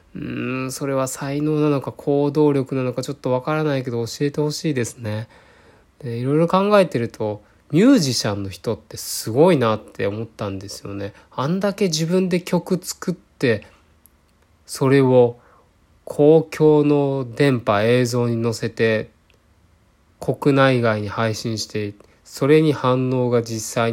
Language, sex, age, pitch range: Japanese, male, 20-39, 110-150 Hz